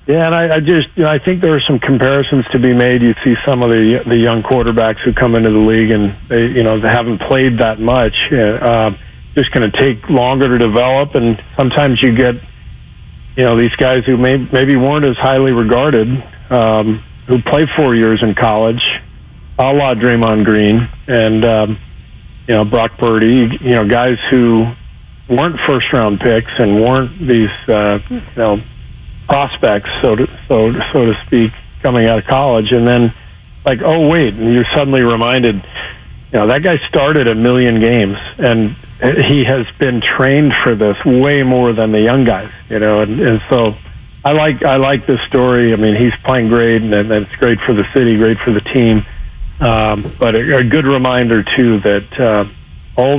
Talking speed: 190 wpm